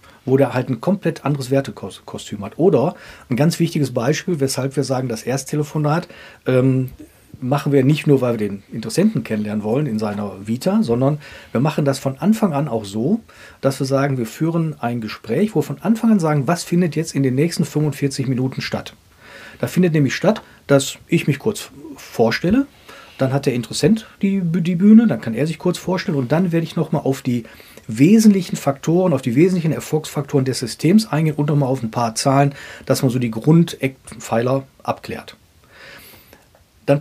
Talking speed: 185 wpm